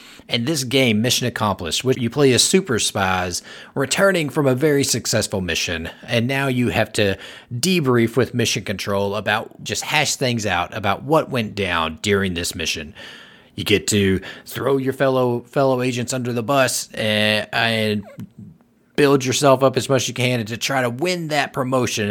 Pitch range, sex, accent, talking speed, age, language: 95-130 Hz, male, American, 175 wpm, 30-49, English